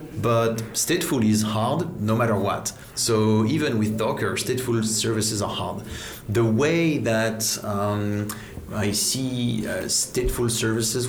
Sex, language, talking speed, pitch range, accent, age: male, Russian, 130 wpm, 105-120 Hz, French, 30-49